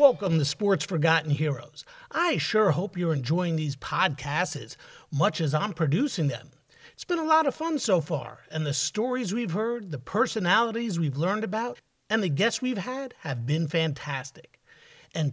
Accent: American